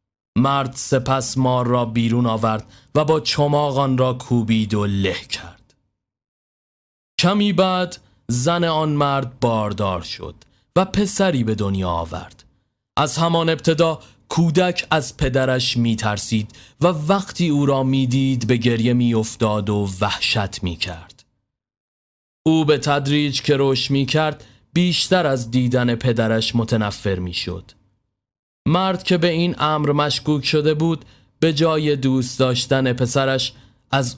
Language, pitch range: Persian, 110-145 Hz